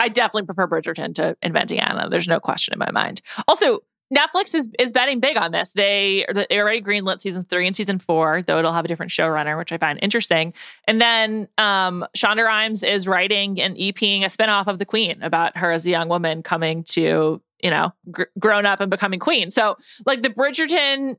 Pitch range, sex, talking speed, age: 175-220 Hz, female, 210 wpm, 20-39